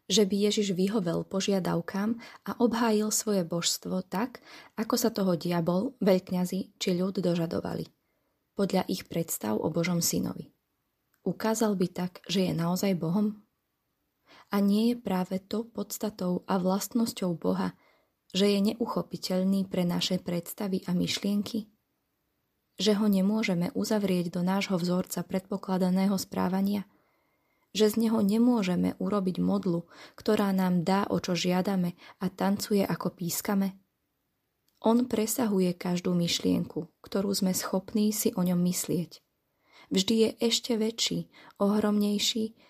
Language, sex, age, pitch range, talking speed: Slovak, female, 20-39, 180-215 Hz, 125 wpm